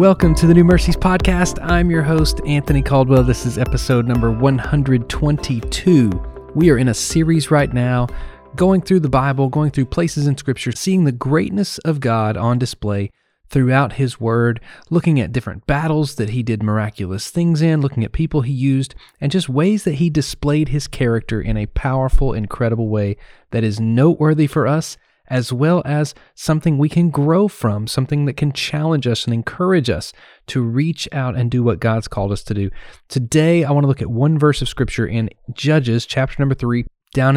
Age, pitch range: 30-49, 115-150 Hz